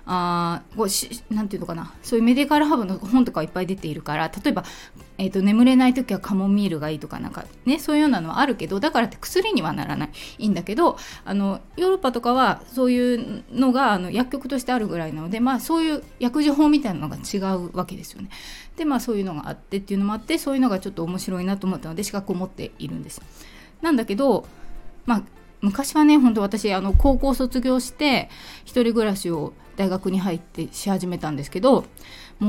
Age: 20-39